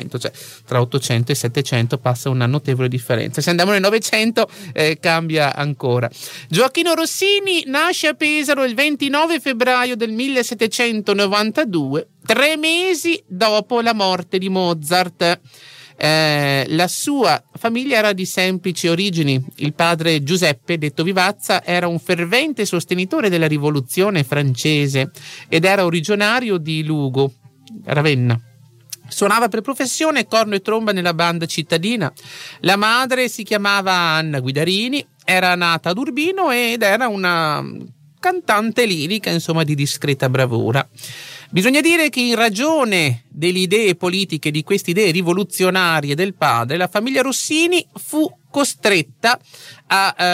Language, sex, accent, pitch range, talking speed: Italian, male, native, 150-230 Hz, 130 wpm